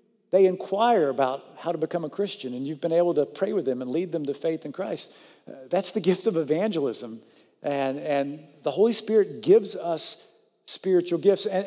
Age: 50-69